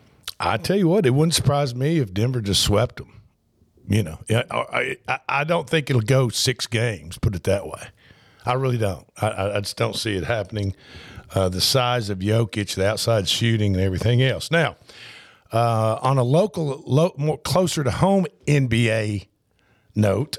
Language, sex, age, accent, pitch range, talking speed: English, male, 50-69, American, 105-130 Hz, 180 wpm